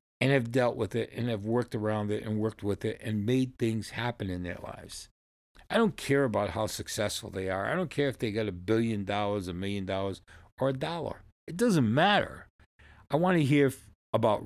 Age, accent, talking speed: 50-69, American, 215 wpm